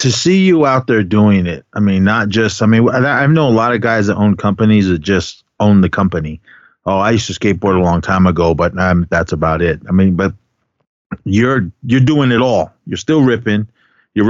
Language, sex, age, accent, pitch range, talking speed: English, male, 30-49, American, 95-115 Hz, 225 wpm